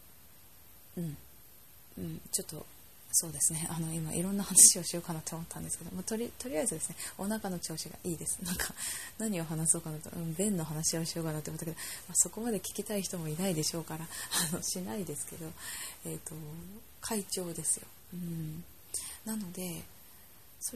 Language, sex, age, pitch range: Japanese, female, 20-39, 155-210 Hz